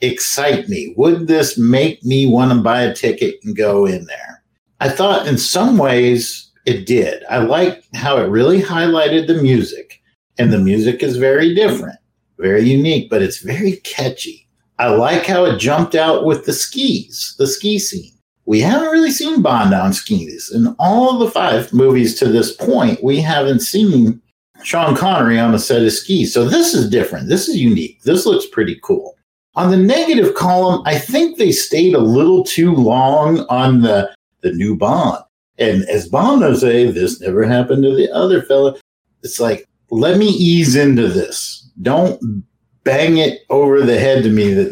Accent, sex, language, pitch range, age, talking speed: American, male, English, 120-205 Hz, 50-69, 180 wpm